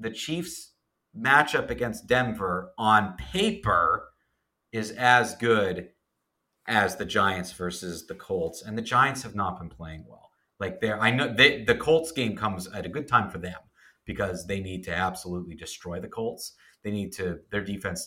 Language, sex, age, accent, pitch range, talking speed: English, male, 40-59, American, 85-115 Hz, 175 wpm